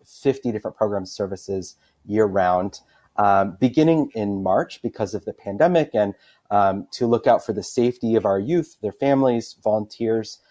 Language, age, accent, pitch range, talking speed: English, 30-49, American, 100-120 Hz, 155 wpm